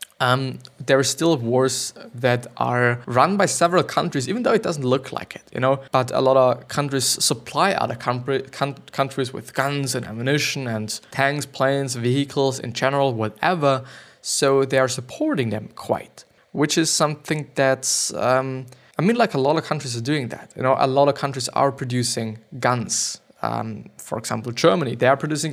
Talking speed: 180 wpm